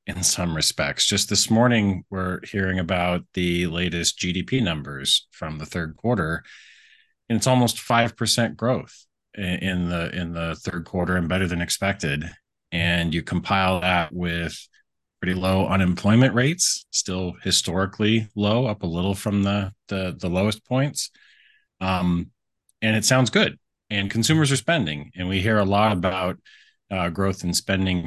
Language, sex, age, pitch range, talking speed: English, male, 30-49, 85-115 Hz, 155 wpm